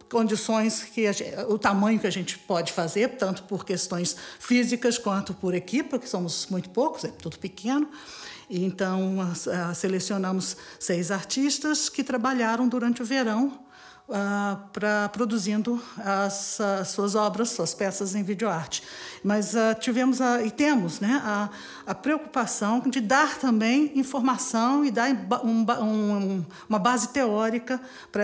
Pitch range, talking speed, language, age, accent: 195-245 Hz, 140 wpm, Portuguese, 50-69, Brazilian